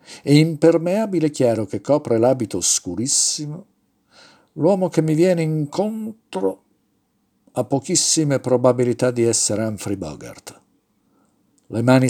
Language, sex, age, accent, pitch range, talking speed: Italian, male, 50-69, native, 105-140 Hz, 105 wpm